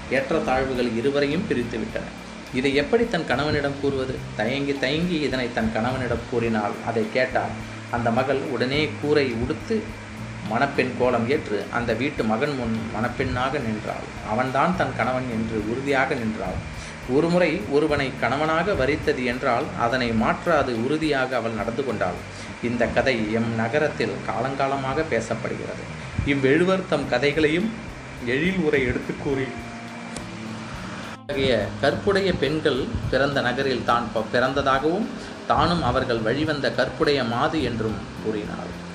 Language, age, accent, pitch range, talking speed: Tamil, 30-49, native, 115-140 Hz, 115 wpm